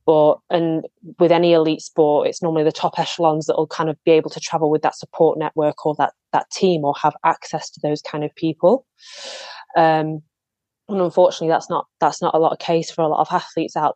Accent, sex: British, female